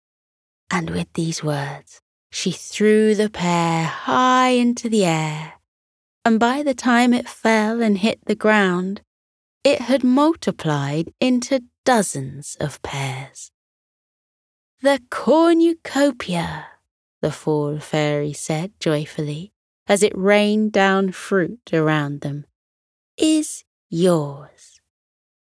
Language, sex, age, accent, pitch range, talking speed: English, female, 20-39, British, 150-215 Hz, 105 wpm